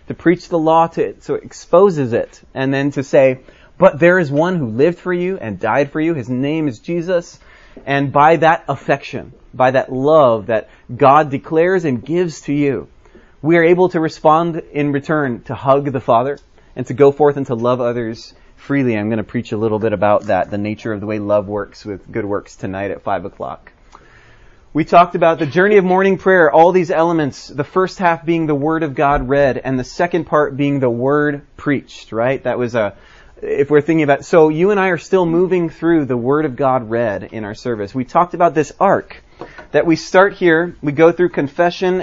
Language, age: English, 30-49